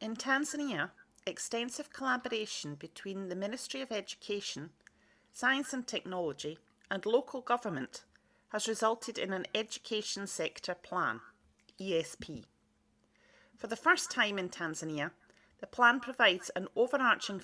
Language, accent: English, British